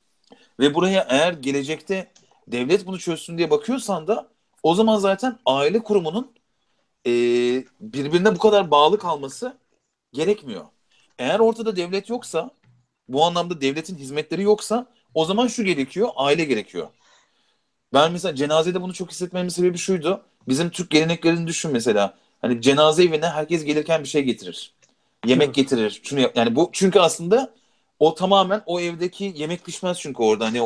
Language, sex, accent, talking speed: Turkish, male, native, 145 wpm